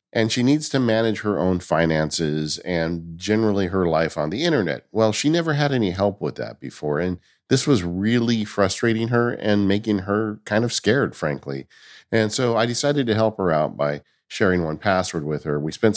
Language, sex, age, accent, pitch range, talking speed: English, male, 50-69, American, 80-115 Hz, 200 wpm